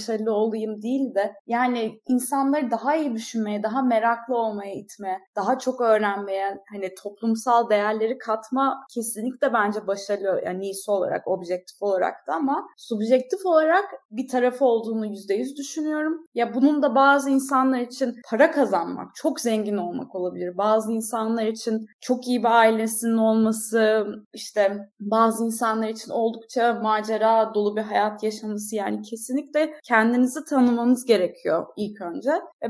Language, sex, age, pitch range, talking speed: Turkish, female, 20-39, 210-260 Hz, 140 wpm